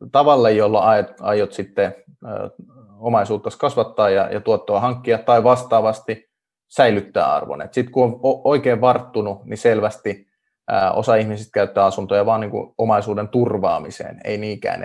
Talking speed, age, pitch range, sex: 115 wpm, 20-39, 100-125 Hz, male